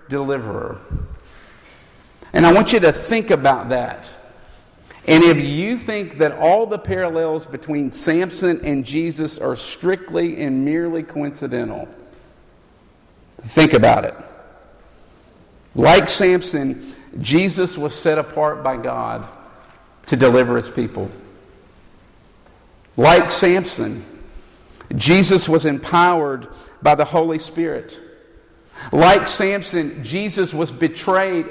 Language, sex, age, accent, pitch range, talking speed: English, male, 50-69, American, 140-175 Hz, 105 wpm